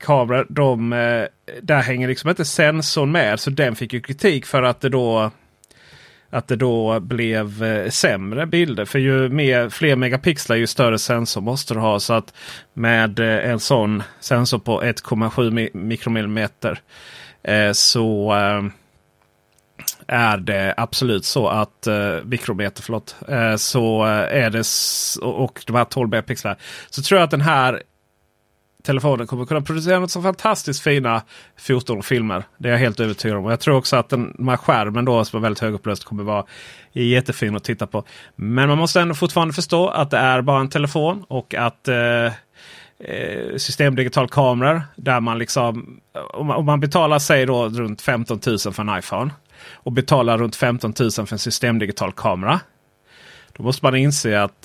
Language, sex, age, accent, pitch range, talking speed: Swedish, male, 30-49, native, 110-135 Hz, 160 wpm